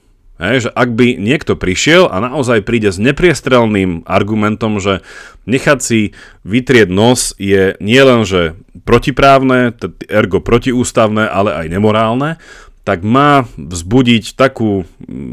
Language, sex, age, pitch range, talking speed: Slovak, male, 40-59, 95-120 Hz, 115 wpm